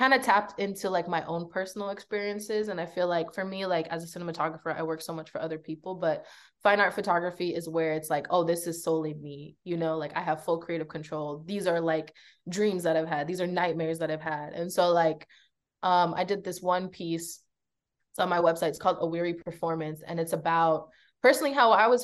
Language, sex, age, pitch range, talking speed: English, female, 20-39, 165-190 Hz, 230 wpm